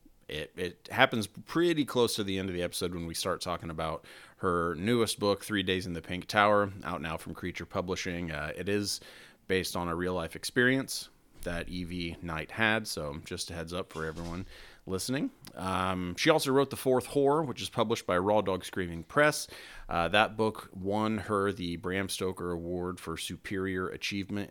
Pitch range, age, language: 85-105 Hz, 30-49, English